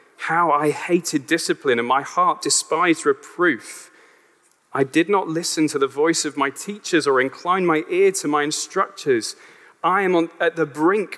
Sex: male